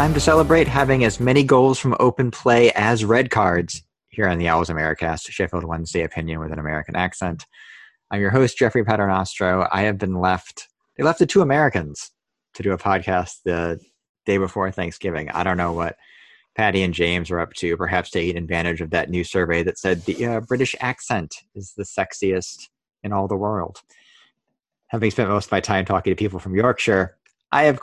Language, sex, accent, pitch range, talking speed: English, male, American, 90-120 Hz, 195 wpm